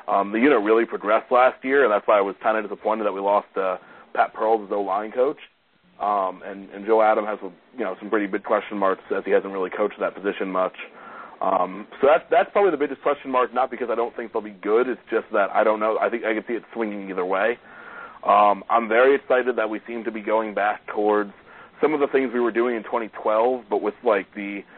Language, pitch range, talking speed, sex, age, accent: English, 100-115 Hz, 250 wpm, male, 30-49, American